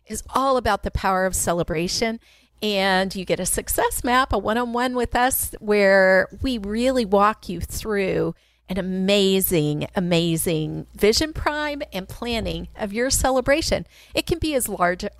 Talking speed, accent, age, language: 150 wpm, American, 40-59, English